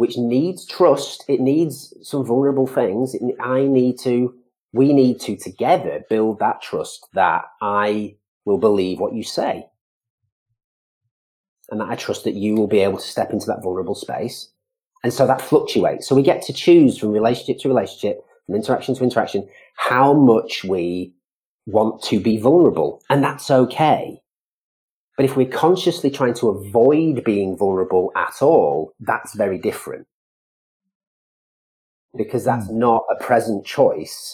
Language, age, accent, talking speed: English, 40-59, British, 150 wpm